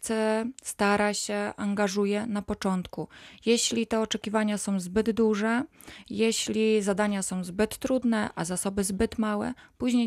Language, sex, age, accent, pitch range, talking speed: Polish, female, 20-39, native, 200-225 Hz, 125 wpm